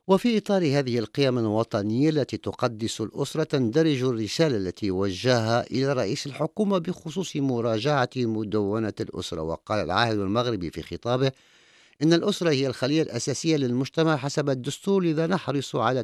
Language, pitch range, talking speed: English, 105-140 Hz, 130 wpm